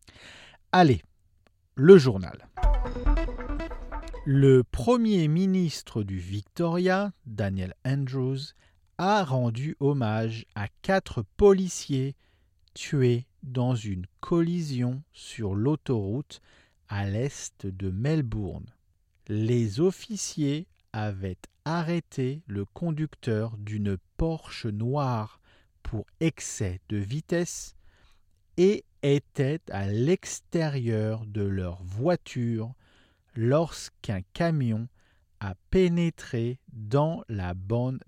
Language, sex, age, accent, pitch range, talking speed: English, male, 50-69, French, 95-145 Hz, 85 wpm